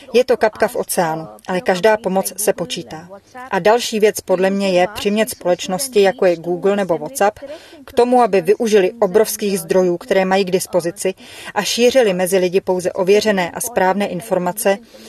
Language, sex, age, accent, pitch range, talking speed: Czech, female, 30-49, native, 180-215 Hz, 165 wpm